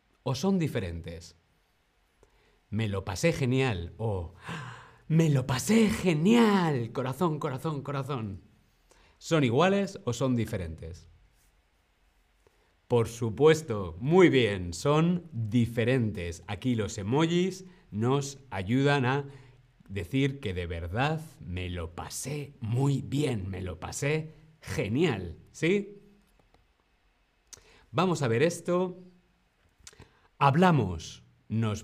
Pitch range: 100-155 Hz